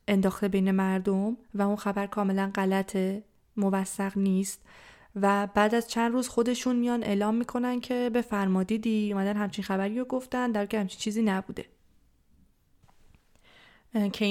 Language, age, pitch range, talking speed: Persian, 20-39, 195-215 Hz, 140 wpm